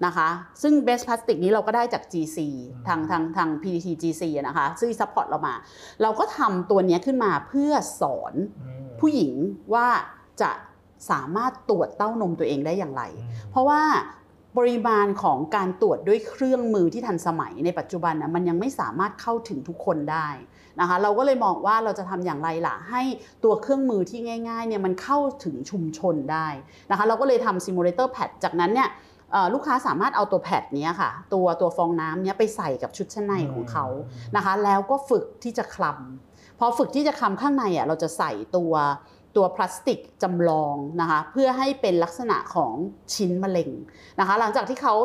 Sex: female